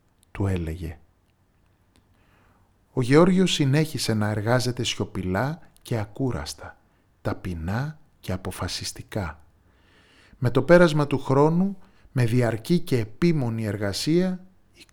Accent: native